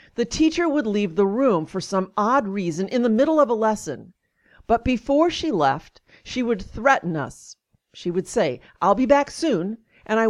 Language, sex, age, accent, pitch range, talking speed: English, female, 50-69, American, 180-235 Hz, 190 wpm